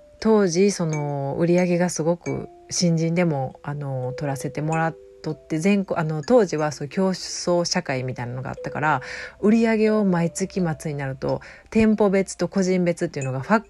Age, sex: 40-59, female